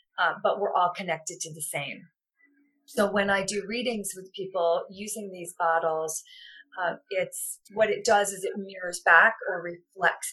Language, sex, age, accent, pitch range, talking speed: English, female, 40-59, American, 175-255 Hz, 170 wpm